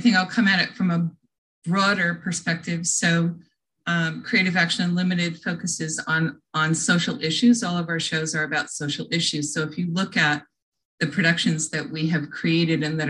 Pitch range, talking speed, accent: 155-185 Hz, 190 wpm, American